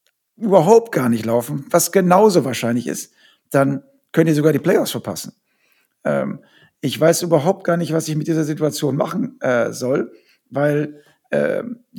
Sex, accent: male, German